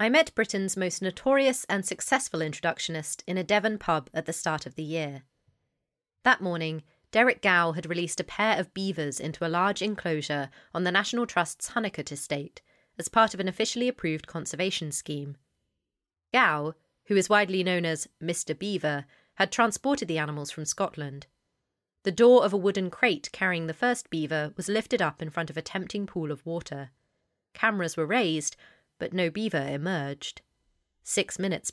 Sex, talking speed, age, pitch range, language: female, 170 wpm, 30-49, 150-195 Hz, English